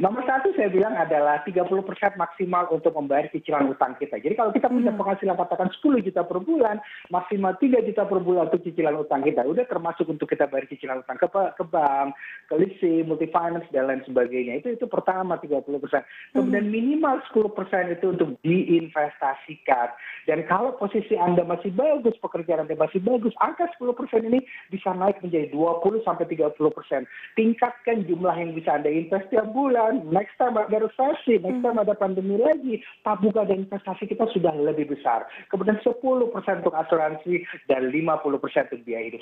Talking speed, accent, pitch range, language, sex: 165 wpm, native, 160-215 Hz, Indonesian, male